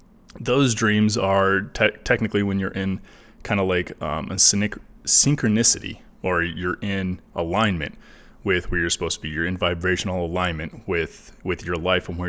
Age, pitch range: 20-39, 90-110 Hz